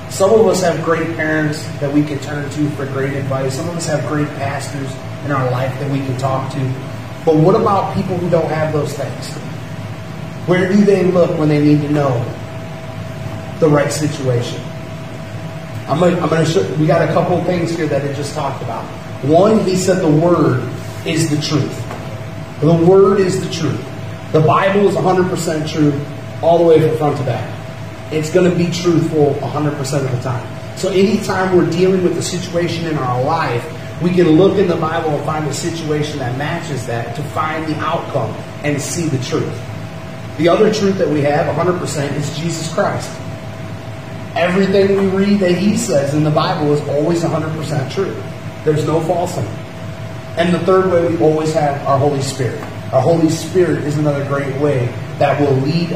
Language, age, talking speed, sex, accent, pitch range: English, 30-49, 190 wpm, male, American, 130-165 Hz